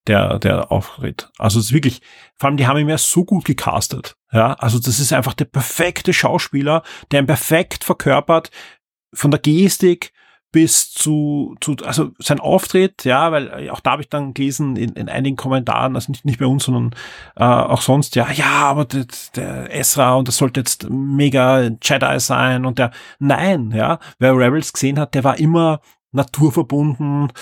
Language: German